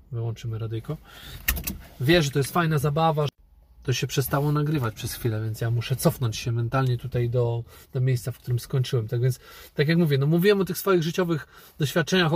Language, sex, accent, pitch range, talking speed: Polish, male, native, 135-180 Hz, 195 wpm